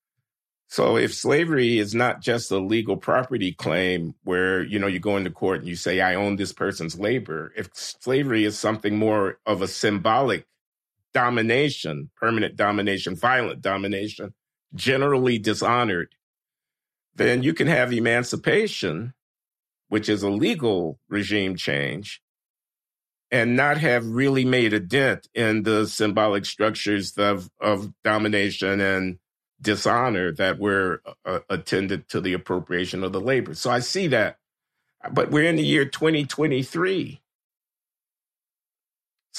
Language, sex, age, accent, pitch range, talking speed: English, male, 50-69, American, 100-125 Hz, 135 wpm